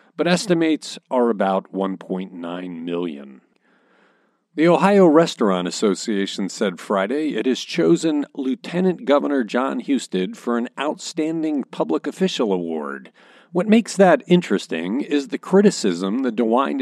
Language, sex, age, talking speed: English, male, 50-69, 120 wpm